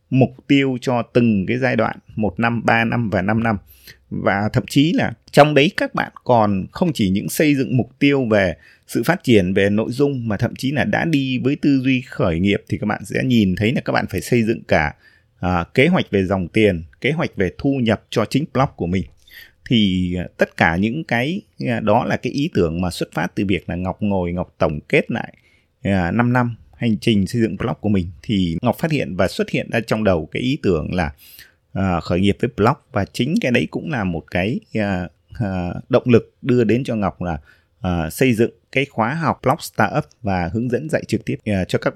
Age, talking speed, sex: 20-39, 240 wpm, male